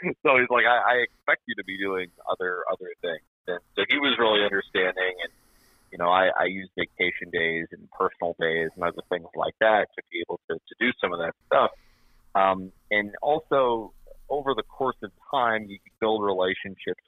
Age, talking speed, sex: 30-49, 200 wpm, male